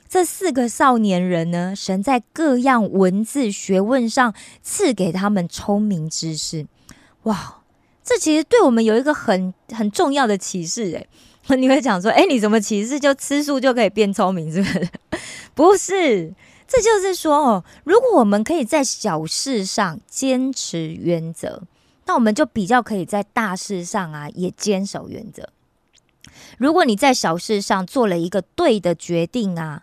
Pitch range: 185-270 Hz